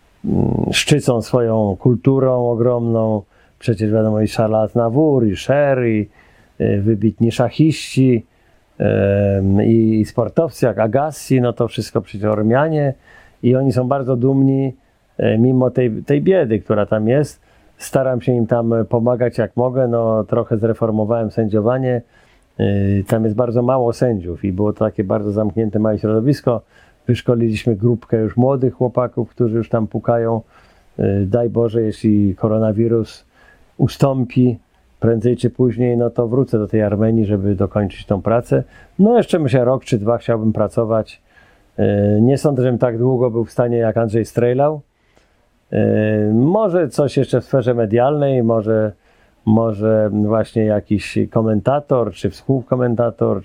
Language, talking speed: Polish, 135 wpm